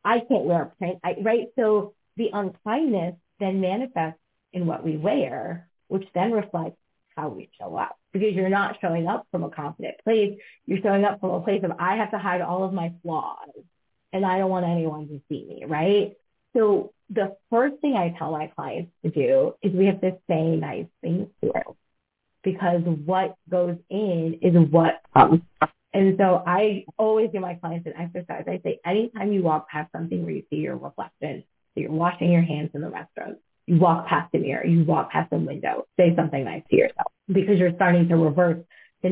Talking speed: 200 wpm